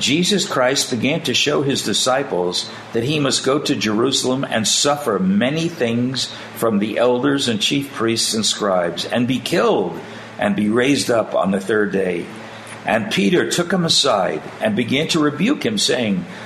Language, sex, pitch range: English, male, 110-160 Hz